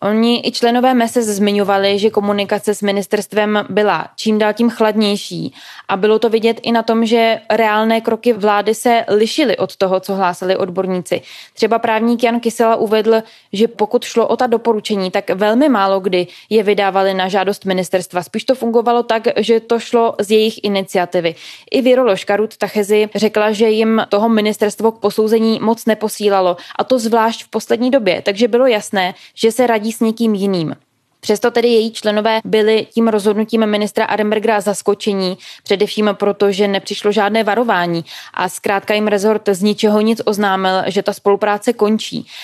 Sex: female